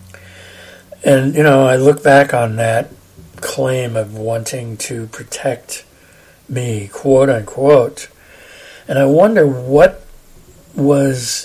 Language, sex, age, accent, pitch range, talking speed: English, male, 60-79, American, 115-155 Hz, 105 wpm